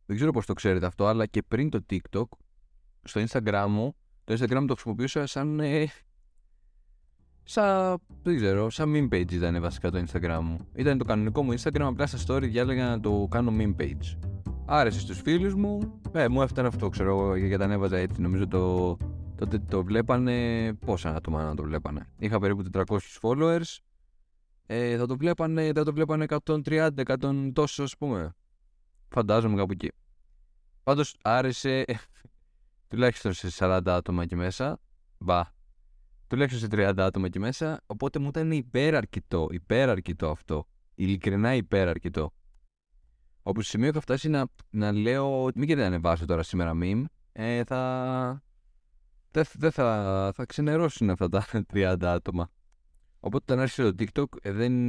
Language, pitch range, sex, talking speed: Greek, 90-130 Hz, male, 155 wpm